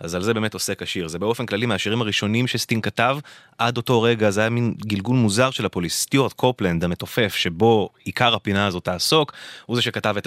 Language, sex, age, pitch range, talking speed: English, male, 20-39, 90-120 Hz, 170 wpm